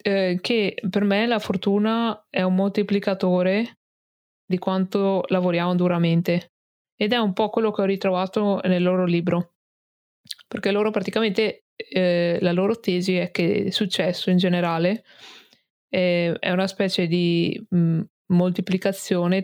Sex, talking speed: female, 135 wpm